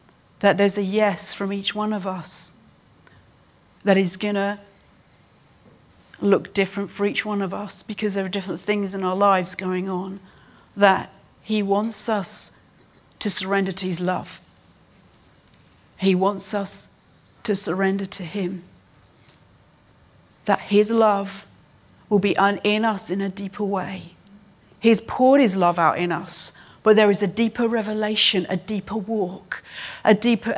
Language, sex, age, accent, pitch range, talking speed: English, female, 40-59, British, 185-210 Hz, 145 wpm